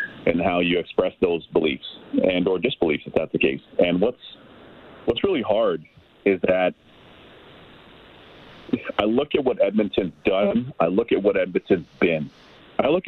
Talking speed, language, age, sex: 160 wpm, English, 40-59, male